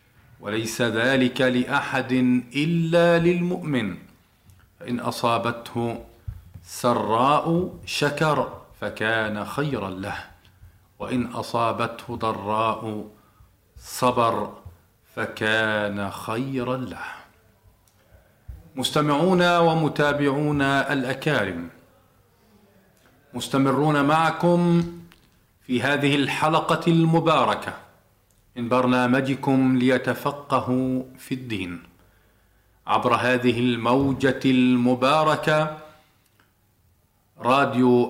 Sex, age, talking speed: male, 40-59, 60 wpm